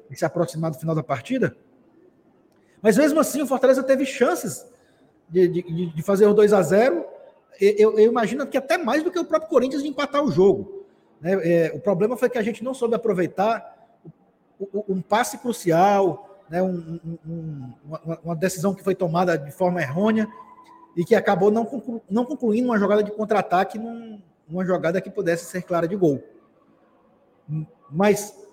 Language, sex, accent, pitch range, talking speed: Portuguese, male, Brazilian, 165-230 Hz, 150 wpm